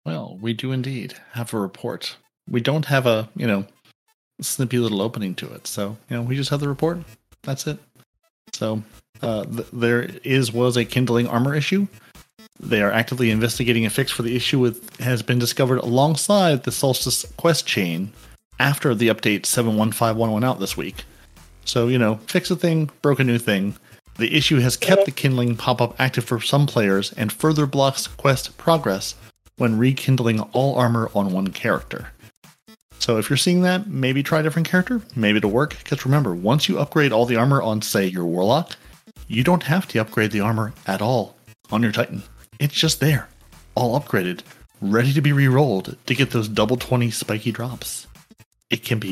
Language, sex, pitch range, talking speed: English, male, 110-140 Hz, 190 wpm